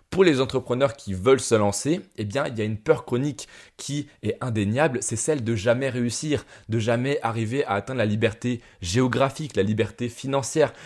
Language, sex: French, male